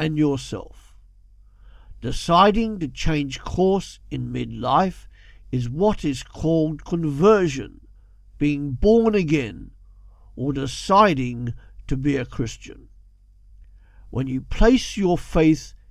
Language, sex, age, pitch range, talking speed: English, male, 50-69, 115-175 Hz, 100 wpm